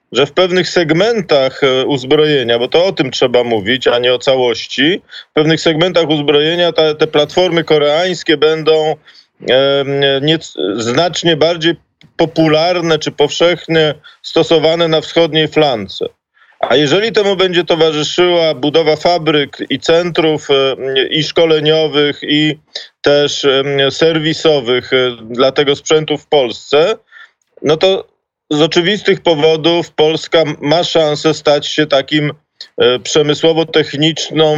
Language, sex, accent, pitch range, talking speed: Polish, male, native, 145-170 Hz, 110 wpm